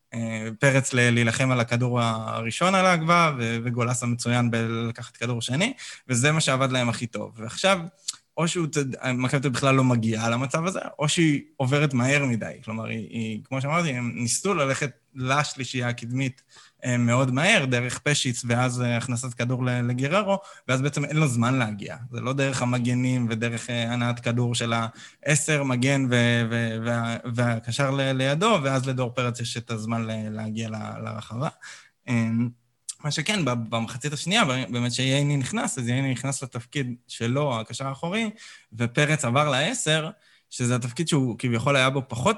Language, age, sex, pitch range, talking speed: Hebrew, 20-39, male, 115-140 Hz, 145 wpm